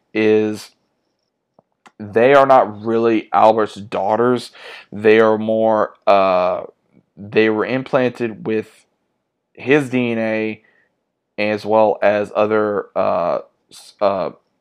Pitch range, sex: 105-120 Hz, male